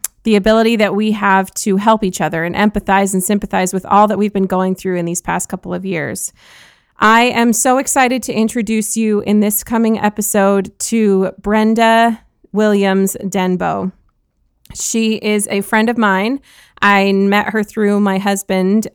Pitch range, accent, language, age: 190-220 Hz, American, English, 20-39